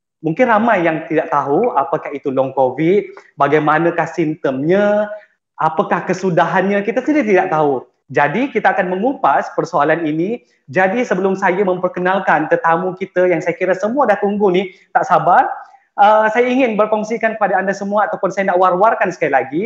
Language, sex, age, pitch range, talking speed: Malay, male, 20-39, 155-195 Hz, 155 wpm